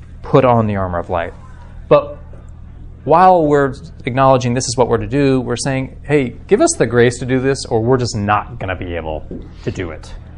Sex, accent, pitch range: male, American, 90-120 Hz